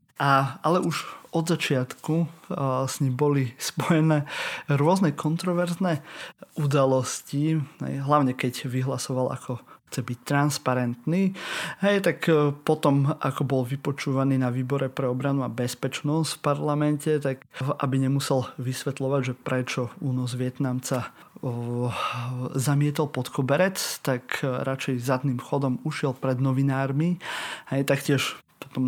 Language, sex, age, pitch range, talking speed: Slovak, male, 30-49, 130-150 Hz, 110 wpm